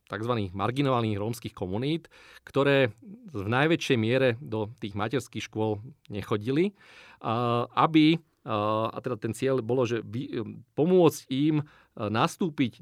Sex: male